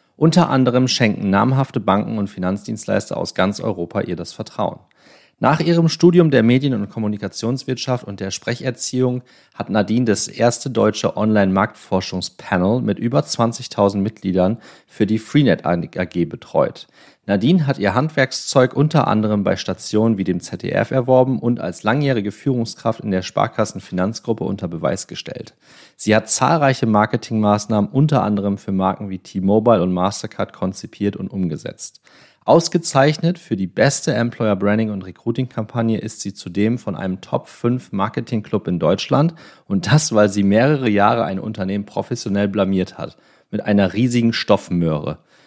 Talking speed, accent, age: 140 wpm, German, 30-49